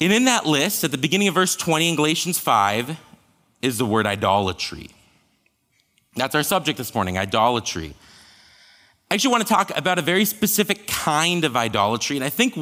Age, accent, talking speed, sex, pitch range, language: 30-49, American, 180 wpm, male, 105-155 Hz, English